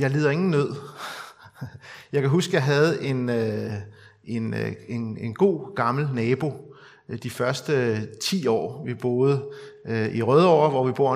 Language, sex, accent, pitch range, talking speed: Danish, male, native, 125-165 Hz, 135 wpm